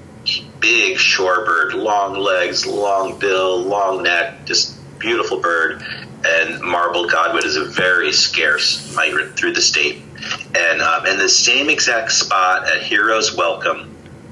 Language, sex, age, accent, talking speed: English, male, 30-49, American, 135 wpm